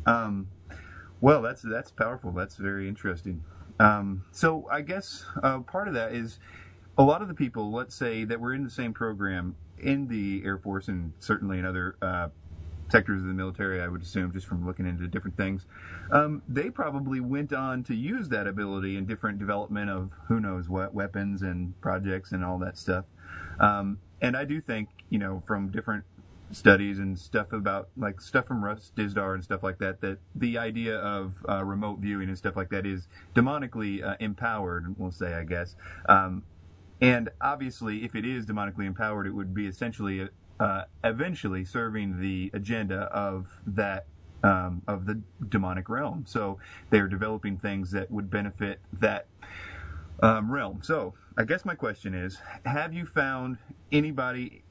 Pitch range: 95-115 Hz